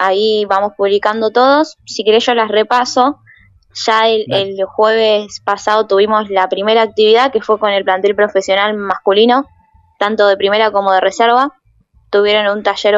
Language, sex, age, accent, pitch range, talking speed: Spanish, female, 20-39, Argentinian, 190-225 Hz, 155 wpm